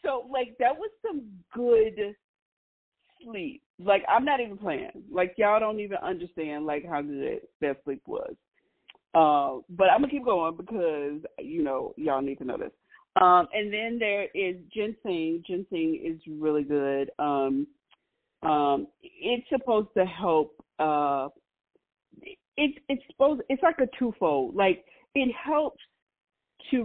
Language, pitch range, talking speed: English, 155-260 Hz, 145 wpm